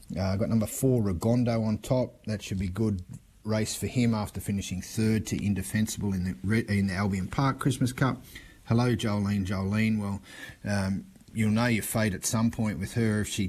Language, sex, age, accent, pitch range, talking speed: English, male, 30-49, Australian, 95-115 Hz, 195 wpm